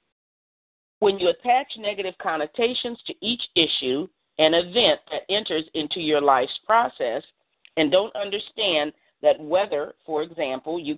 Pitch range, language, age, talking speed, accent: 155-215 Hz, English, 40-59, 130 wpm, American